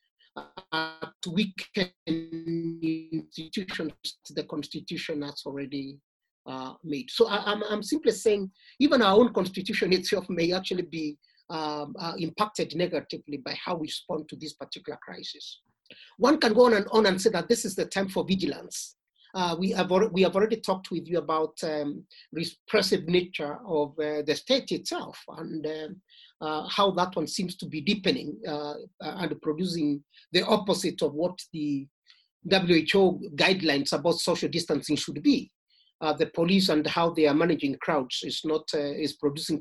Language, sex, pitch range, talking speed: English, male, 155-205 Hz, 160 wpm